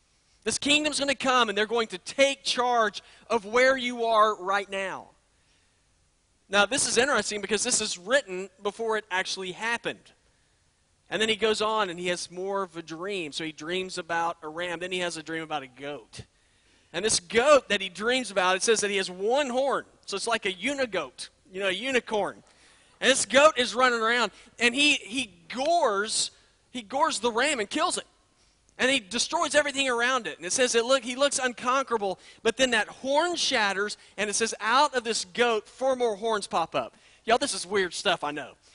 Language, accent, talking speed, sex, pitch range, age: English, American, 205 wpm, male, 180-245 Hz, 40-59